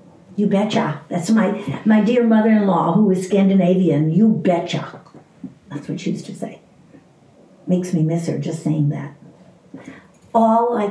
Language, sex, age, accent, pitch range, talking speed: English, female, 60-79, American, 155-190 Hz, 150 wpm